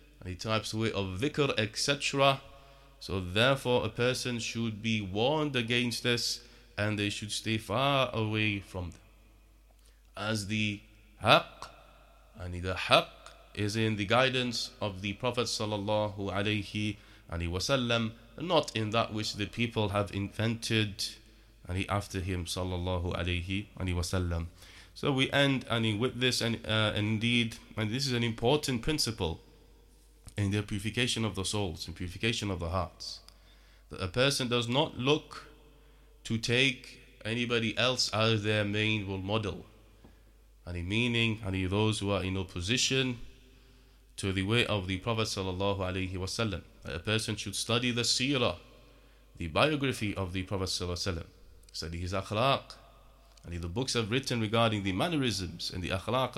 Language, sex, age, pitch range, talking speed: English, male, 30-49, 95-120 Hz, 150 wpm